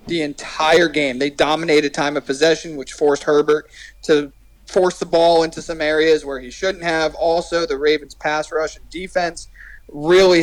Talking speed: 165 wpm